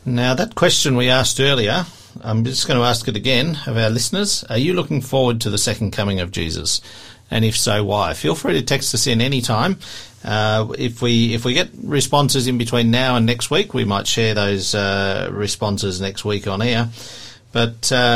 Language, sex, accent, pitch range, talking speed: English, male, Australian, 105-130 Hz, 205 wpm